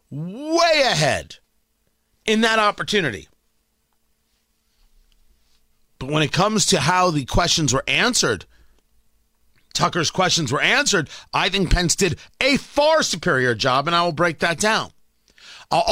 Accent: American